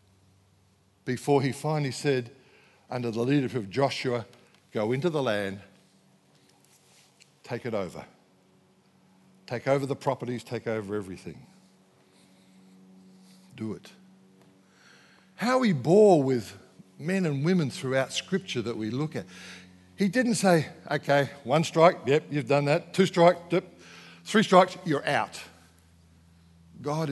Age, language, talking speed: 60-79, English, 125 wpm